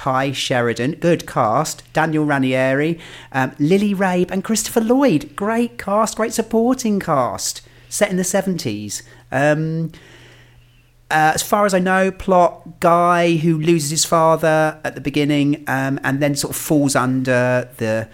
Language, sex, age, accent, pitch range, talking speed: English, male, 40-59, British, 110-150 Hz, 150 wpm